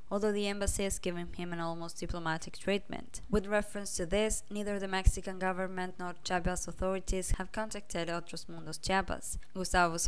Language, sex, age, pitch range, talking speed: English, female, 20-39, 170-195 Hz, 165 wpm